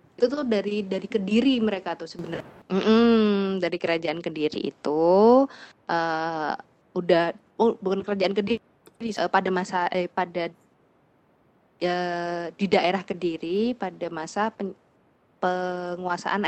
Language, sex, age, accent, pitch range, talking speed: Indonesian, female, 20-39, native, 170-200 Hz, 115 wpm